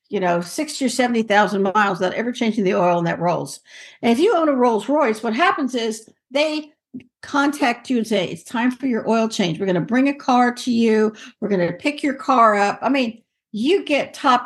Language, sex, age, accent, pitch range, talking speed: English, female, 60-79, American, 215-280 Hz, 230 wpm